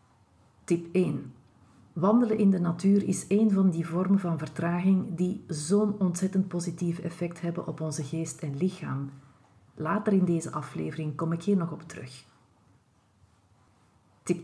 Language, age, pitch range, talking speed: Dutch, 40-59, 140-200 Hz, 145 wpm